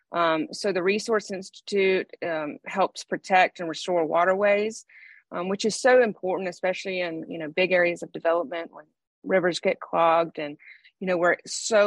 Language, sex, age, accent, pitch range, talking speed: English, female, 30-49, American, 165-190 Hz, 165 wpm